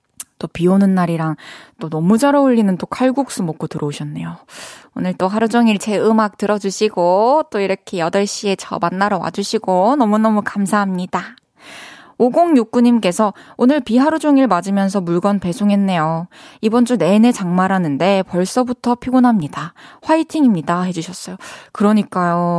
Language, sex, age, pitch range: Korean, female, 20-39, 190-265 Hz